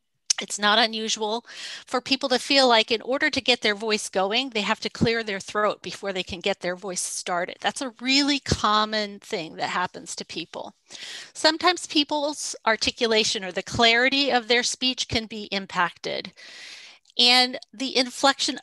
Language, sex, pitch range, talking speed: English, female, 210-265 Hz, 170 wpm